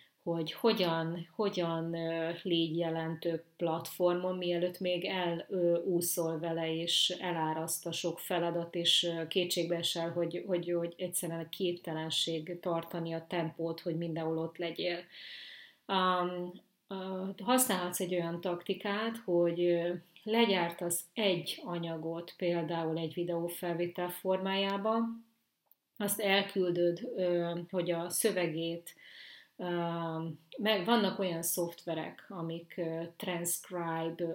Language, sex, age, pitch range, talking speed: Hungarian, female, 30-49, 165-185 Hz, 95 wpm